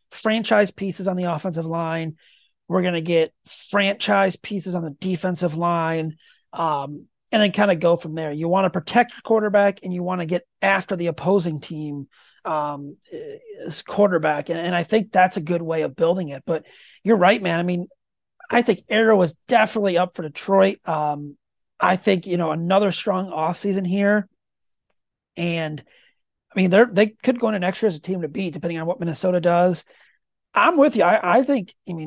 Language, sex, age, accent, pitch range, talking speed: English, male, 30-49, American, 165-205 Hz, 195 wpm